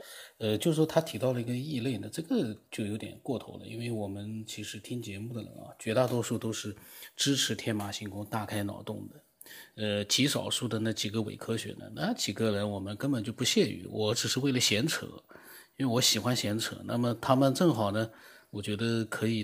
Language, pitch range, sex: Chinese, 110-140 Hz, male